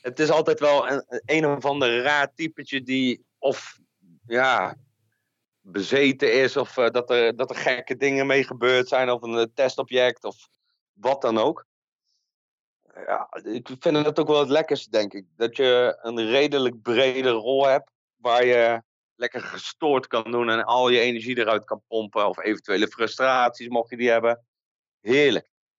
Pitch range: 115-135 Hz